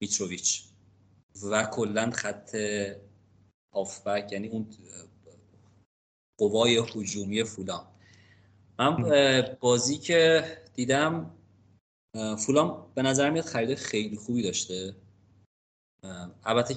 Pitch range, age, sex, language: 95-115 Hz, 30-49, male, Persian